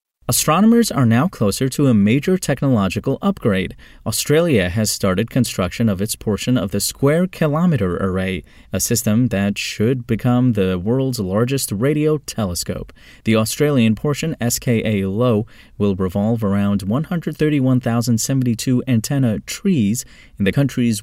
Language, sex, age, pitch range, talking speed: English, male, 30-49, 100-130 Hz, 130 wpm